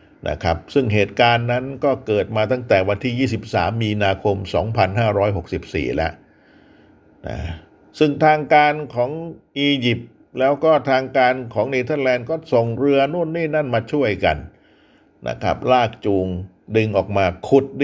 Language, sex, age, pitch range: Thai, male, 60-79, 100-135 Hz